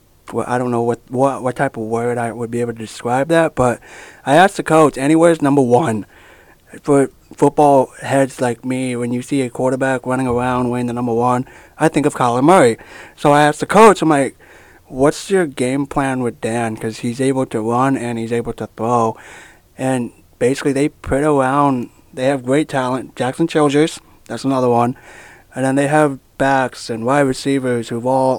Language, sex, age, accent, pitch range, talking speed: English, male, 20-39, American, 115-140 Hz, 195 wpm